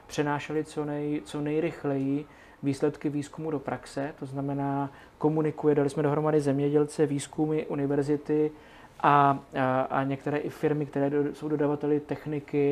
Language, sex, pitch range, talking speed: Czech, male, 140-150 Hz, 125 wpm